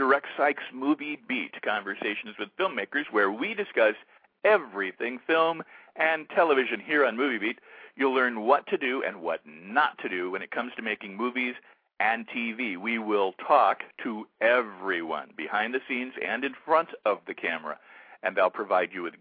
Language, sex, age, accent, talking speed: English, male, 50-69, American, 170 wpm